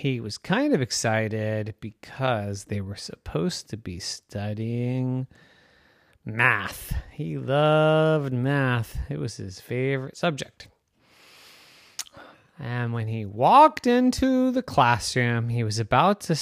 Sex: male